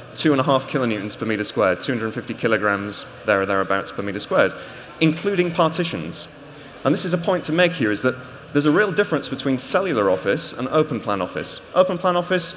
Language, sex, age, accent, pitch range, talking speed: English, male, 30-49, British, 120-160 Hz, 180 wpm